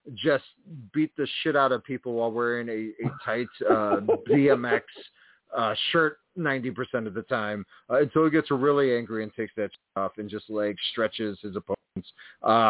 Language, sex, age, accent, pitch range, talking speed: English, male, 40-59, American, 120-185 Hz, 185 wpm